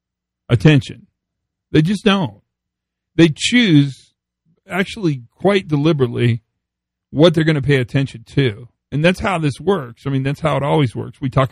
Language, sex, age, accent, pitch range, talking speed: English, male, 40-59, American, 120-160 Hz, 155 wpm